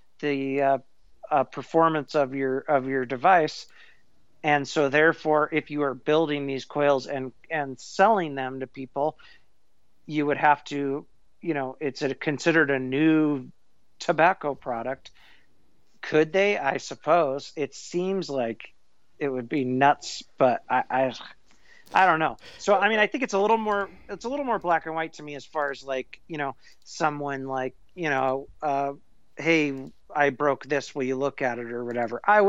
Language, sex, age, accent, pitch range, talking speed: English, male, 40-59, American, 135-165 Hz, 175 wpm